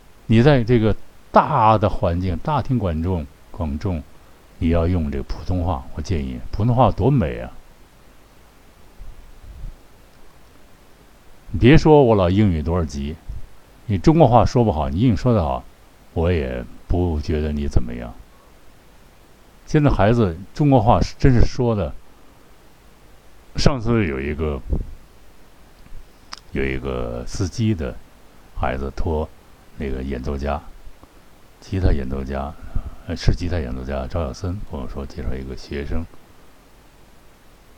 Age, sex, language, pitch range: 60-79, male, Chinese, 70-100 Hz